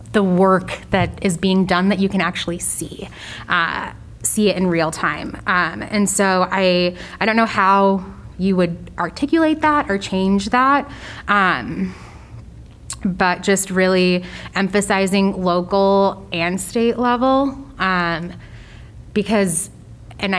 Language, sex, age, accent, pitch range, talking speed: English, female, 20-39, American, 175-200 Hz, 130 wpm